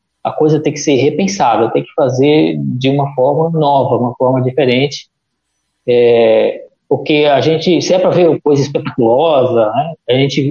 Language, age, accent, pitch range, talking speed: Portuguese, 20-39, Brazilian, 125-155 Hz, 165 wpm